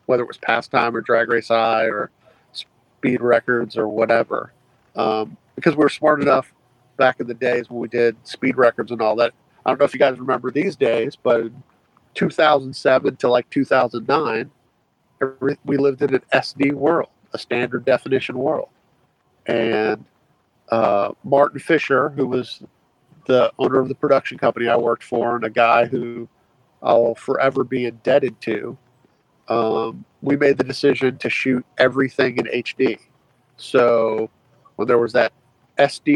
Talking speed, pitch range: 160 wpm, 115-135 Hz